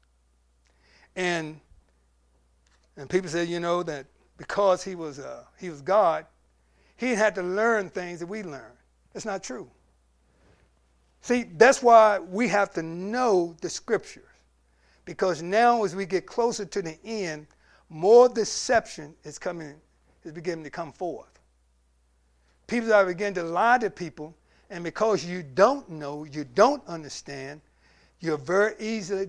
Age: 60-79